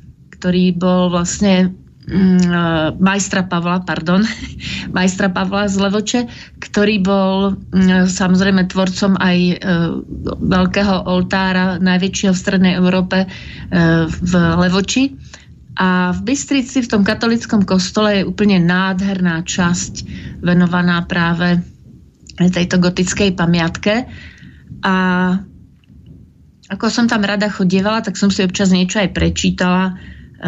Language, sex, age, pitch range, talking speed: Slovak, female, 30-49, 180-200 Hz, 100 wpm